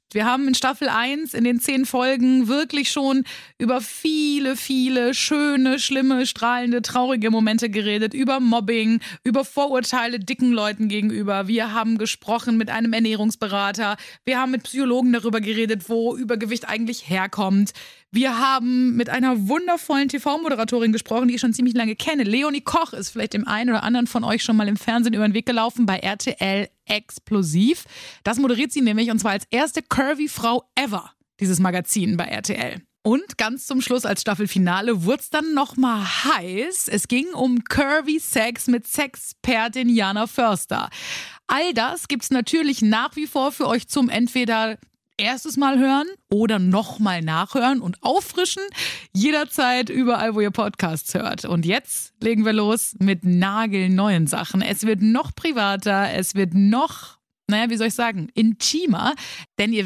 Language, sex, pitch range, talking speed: German, female, 210-260 Hz, 160 wpm